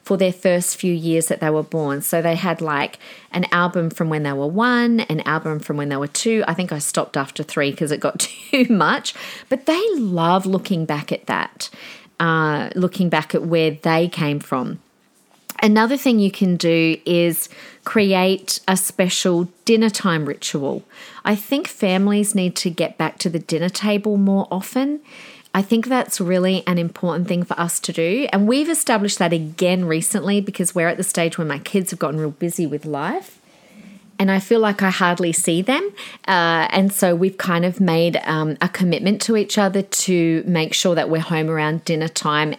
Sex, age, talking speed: female, 40-59, 195 wpm